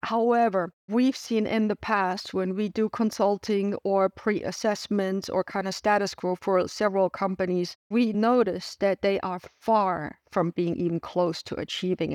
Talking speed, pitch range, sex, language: 160 wpm, 185-210 Hz, female, English